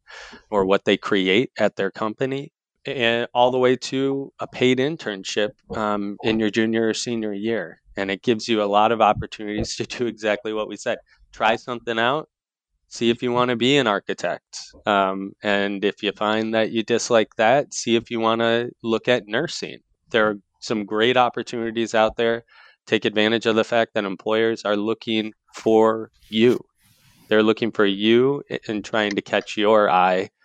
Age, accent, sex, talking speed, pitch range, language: 20-39, American, male, 180 wpm, 105-120 Hz, English